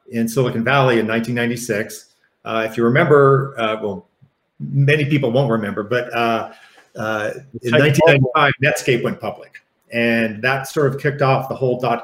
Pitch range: 115-135 Hz